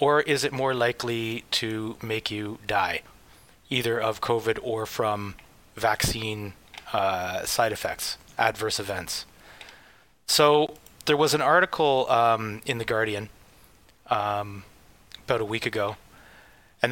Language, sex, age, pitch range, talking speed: English, male, 30-49, 105-130 Hz, 125 wpm